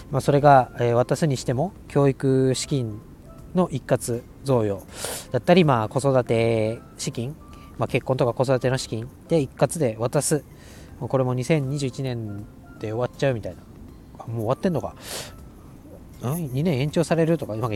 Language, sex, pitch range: Japanese, male, 110-140 Hz